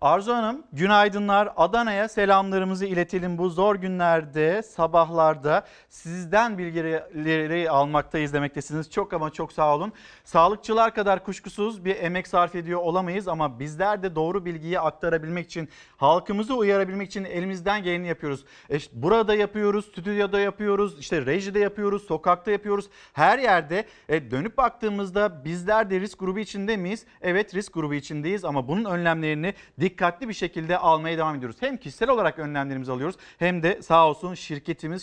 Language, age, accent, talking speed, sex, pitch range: Turkish, 50-69, native, 145 wpm, male, 160-205 Hz